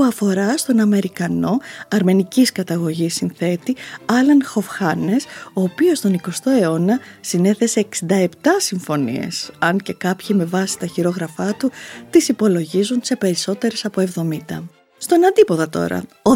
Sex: female